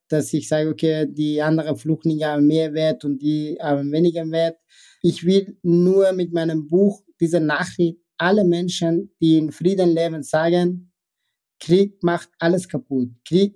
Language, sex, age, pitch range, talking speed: German, male, 50-69, 155-180 Hz, 155 wpm